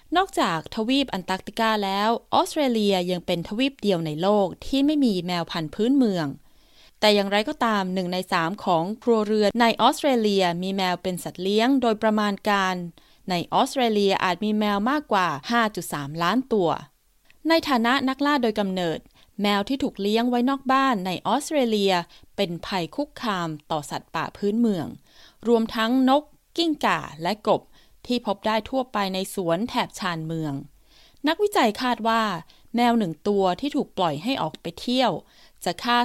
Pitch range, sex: 180-245 Hz, female